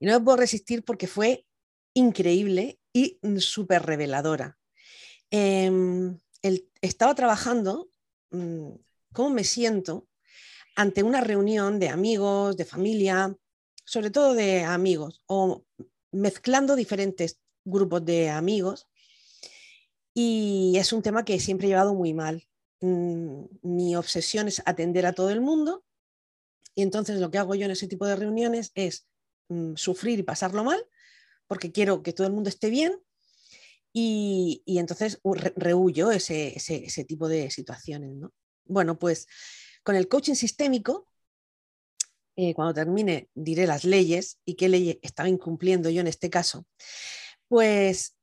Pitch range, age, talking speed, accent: 170-210 Hz, 40-59, 135 wpm, Spanish